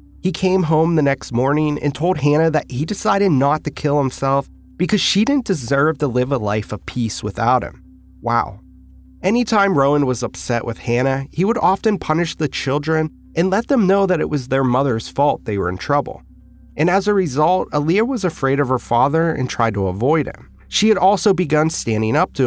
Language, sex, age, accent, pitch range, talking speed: English, male, 30-49, American, 105-160 Hz, 205 wpm